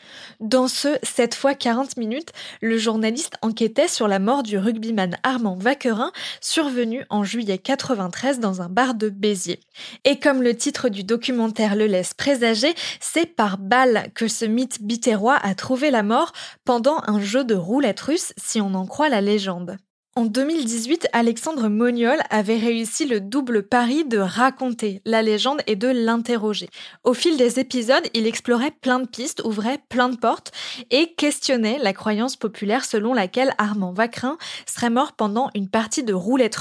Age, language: 20-39, French